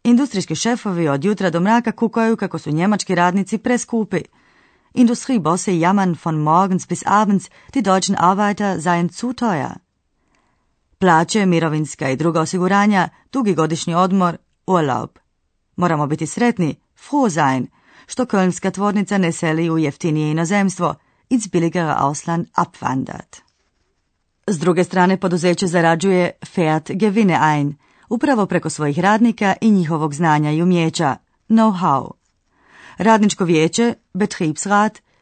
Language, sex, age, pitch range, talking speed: Croatian, female, 30-49, 160-205 Hz, 125 wpm